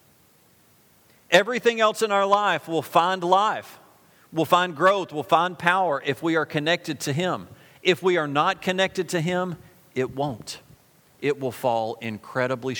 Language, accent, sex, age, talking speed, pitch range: English, American, male, 40-59, 155 wpm, 130-180 Hz